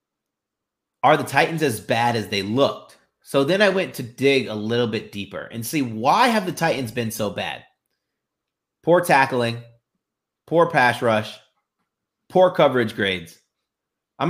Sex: male